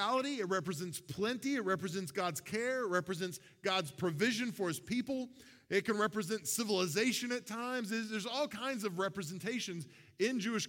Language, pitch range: English, 180-240 Hz